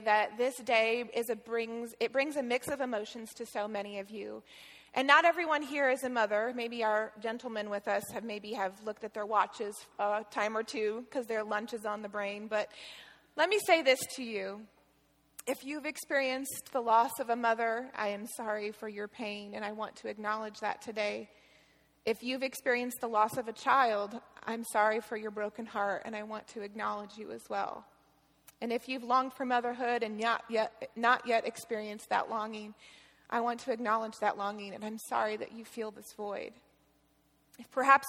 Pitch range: 215-255 Hz